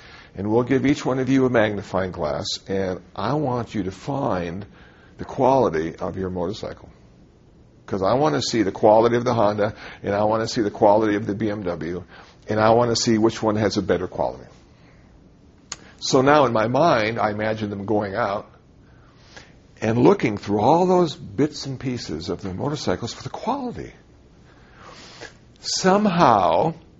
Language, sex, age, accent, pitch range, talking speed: English, male, 60-79, American, 95-125 Hz, 170 wpm